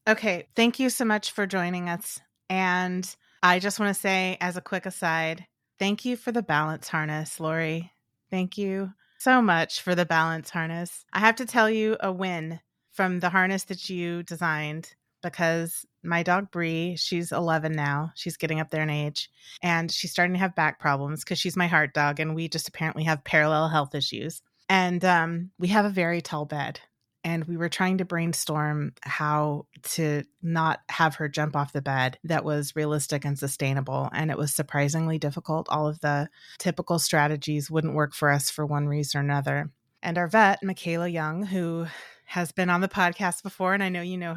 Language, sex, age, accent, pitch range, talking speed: English, female, 30-49, American, 155-185 Hz, 195 wpm